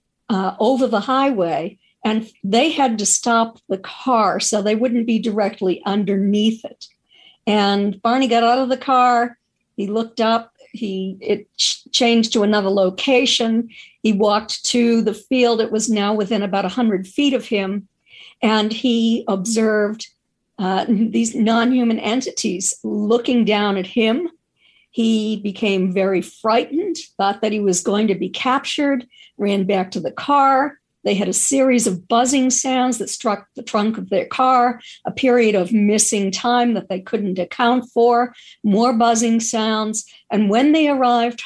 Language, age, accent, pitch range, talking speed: English, 50-69, American, 205-245 Hz, 155 wpm